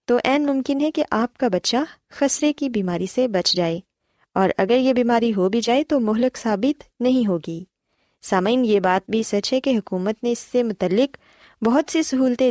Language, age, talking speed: Urdu, 20-39, 195 wpm